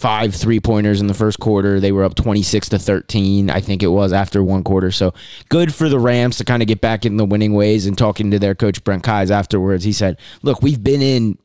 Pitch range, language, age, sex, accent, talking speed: 105-125 Hz, English, 20-39, male, American, 245 wpm